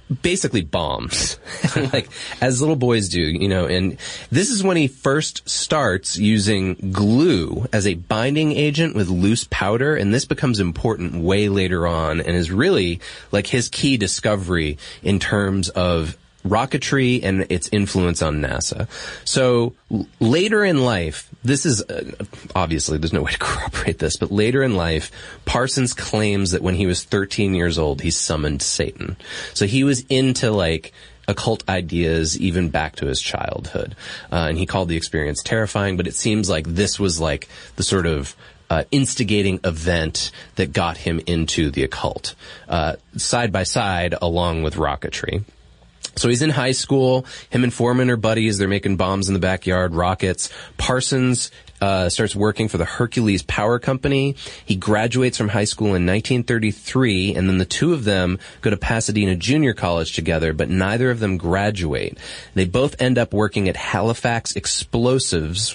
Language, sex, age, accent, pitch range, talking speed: English, male, 30-49, American, 90-120 Hz, 165 wpm